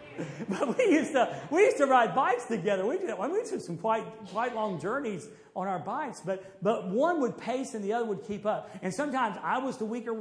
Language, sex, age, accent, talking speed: English, male, 50-69, American, 230 wpm